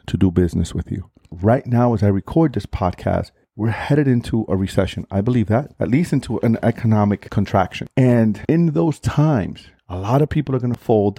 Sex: male